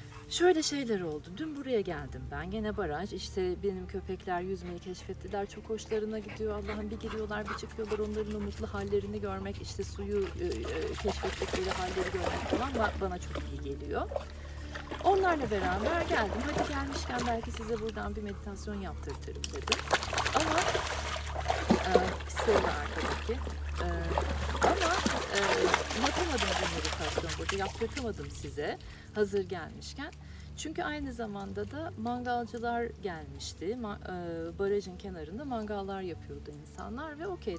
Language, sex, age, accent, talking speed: Turkish, female, 40-59, native, 120 wpm